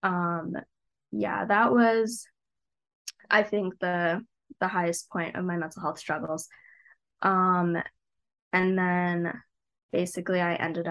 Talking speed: 115 wpm